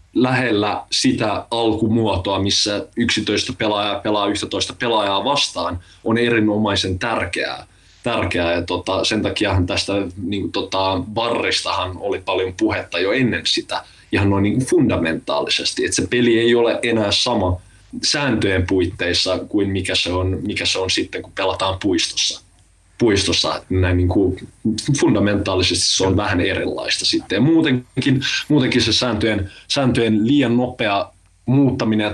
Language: Finnish